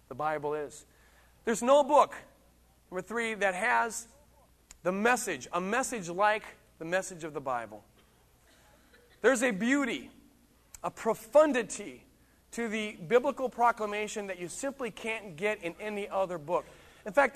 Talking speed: 140 wpm